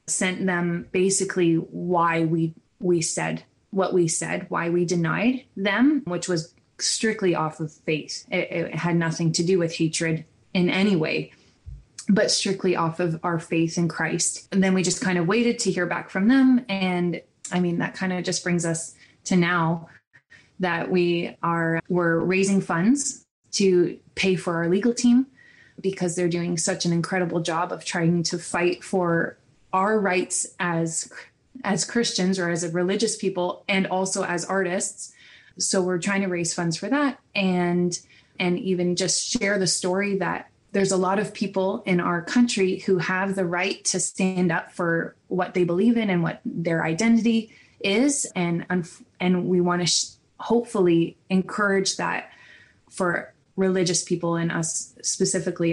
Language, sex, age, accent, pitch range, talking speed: English, female, 20-39, American, 170-195 Hz, 165 wpm